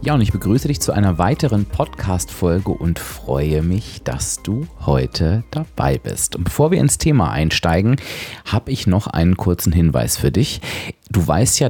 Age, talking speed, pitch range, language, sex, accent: 30-49, 175 wpm, 85-115 Hz, German, male, German